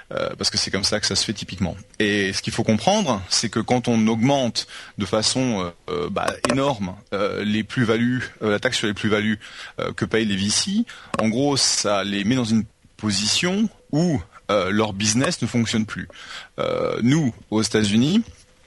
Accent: French